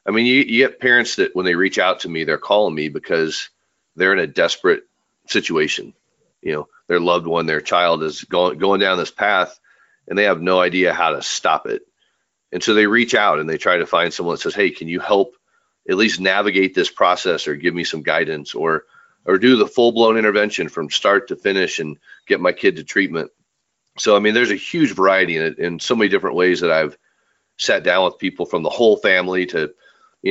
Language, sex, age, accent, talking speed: English, male, 40-59, American, 220 wpm